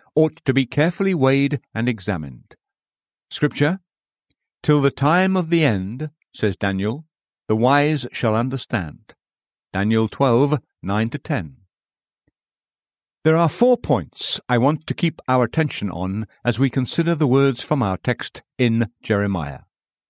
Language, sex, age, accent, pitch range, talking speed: English, male, 50-69, British, 110-155 Hz, 135 wpm